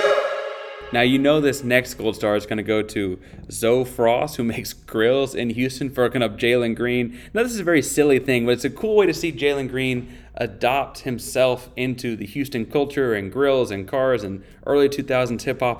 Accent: American